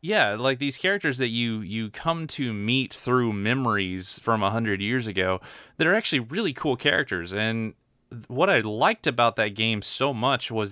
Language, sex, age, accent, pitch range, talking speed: English, male, 30-49, American, 100-125 Hz, 180 wpm